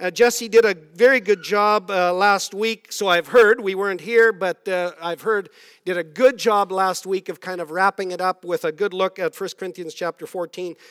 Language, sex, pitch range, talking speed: English, male, 200-275 Hz, 225 wpm